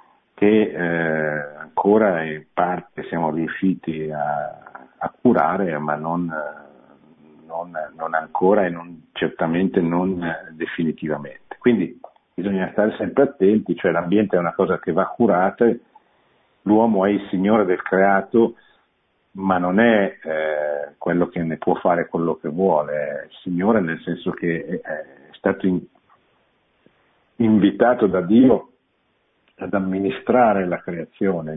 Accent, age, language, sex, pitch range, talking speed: native, 50-69, Italian, male, 80-100 Hz, 130 wpm